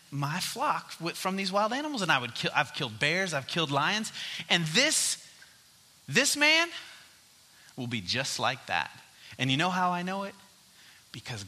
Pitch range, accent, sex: 120-190 Hz, American, male